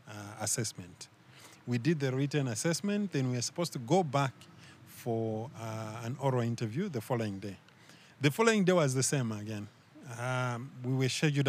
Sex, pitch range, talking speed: male, 120-160 Hz, 170 wpm